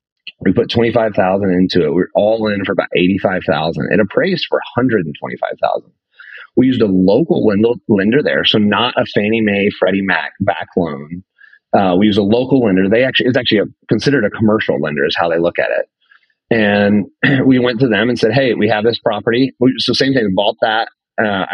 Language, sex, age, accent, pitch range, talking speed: English, male, 30-49, American, 90-110 Hz, 200 wpm